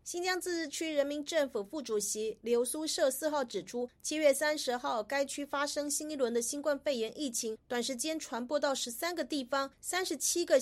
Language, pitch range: Chinese, 255-310 Hz